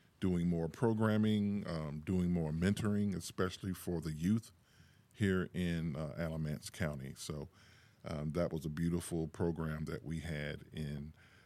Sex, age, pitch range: male, 40-59, 80-95 Hz